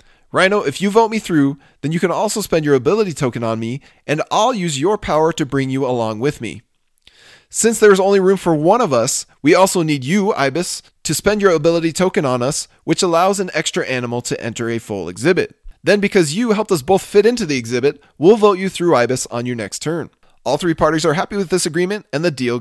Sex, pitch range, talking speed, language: male, 125-185 Hz, 235 wpm, English